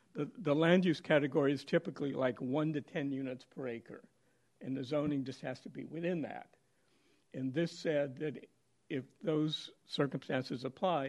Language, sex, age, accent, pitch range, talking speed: English, male, 60-79, American, 135-155 Hz, 170 wpm